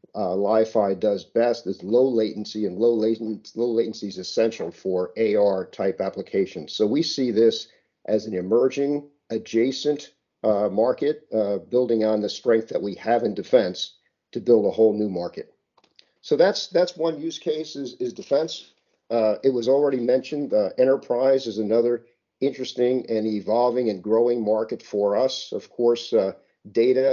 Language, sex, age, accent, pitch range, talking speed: English, male, 50-69, American, 105-120 Hz, 160 wpm